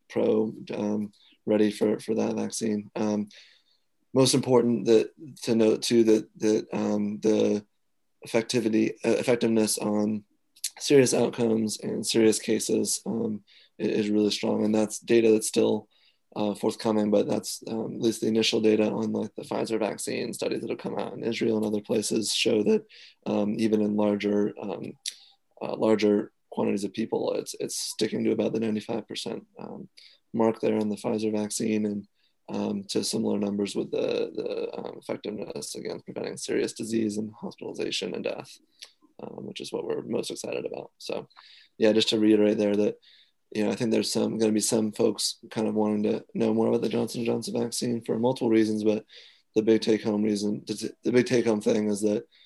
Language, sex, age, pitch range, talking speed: English, male, 20-39, 105-115 Hz, 180 wpm